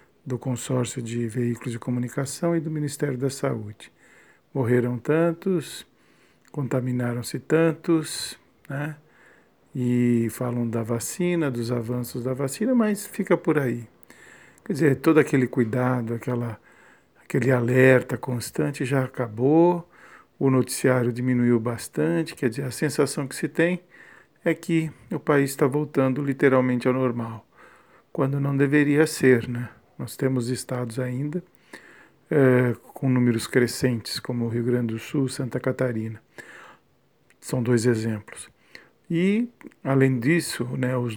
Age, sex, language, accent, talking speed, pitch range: 50-69, male, Portuguese, Brazilian, 125 wpm, 125-145 Hz